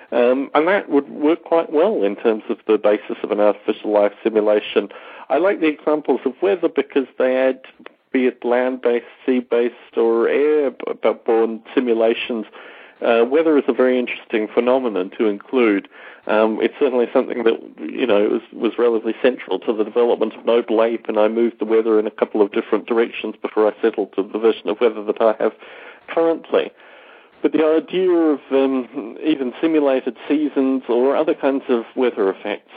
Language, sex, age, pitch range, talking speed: English, male, 40-59, 110-140 Hz, 175 wpm